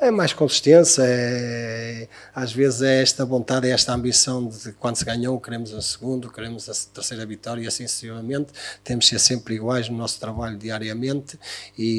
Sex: male